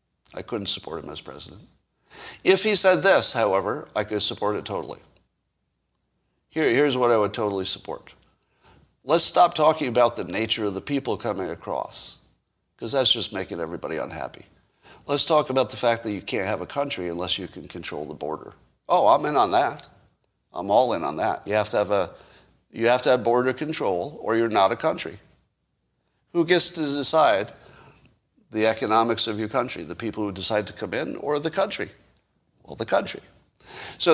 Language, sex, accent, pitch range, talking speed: English, male, American, 110-155 Hz, 185 wpm